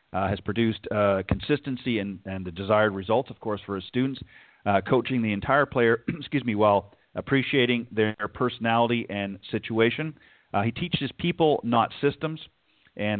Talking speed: 160 wpm